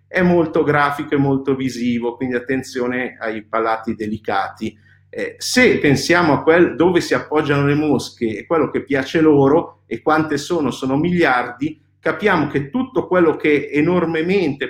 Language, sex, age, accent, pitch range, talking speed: Italian, male, 50-69, native, 115-165 Hz, 155 wpm